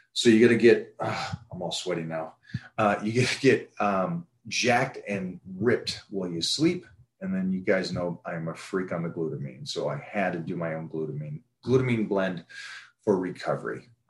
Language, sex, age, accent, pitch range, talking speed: English, male, 30-49, American, 90-120 Hz, 185 wpm